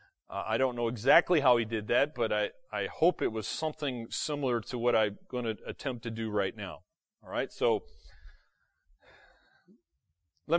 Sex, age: male, 30-49